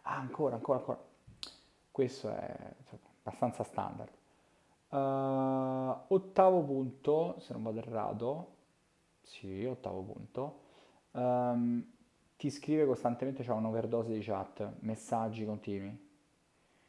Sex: male